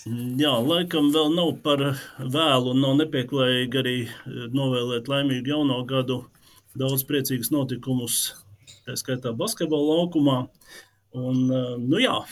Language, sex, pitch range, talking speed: English, male, 130-170 Hz, 110 wpm